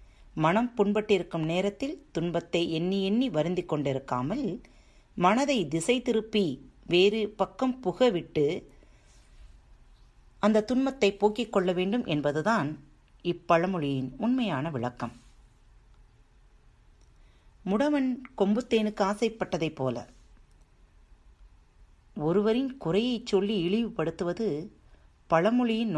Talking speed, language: 75 wpm, Tamil